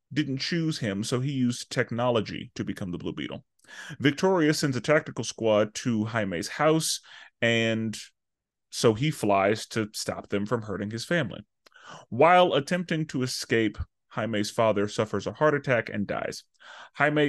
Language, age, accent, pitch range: English, 30-49, American, 105-140 Hz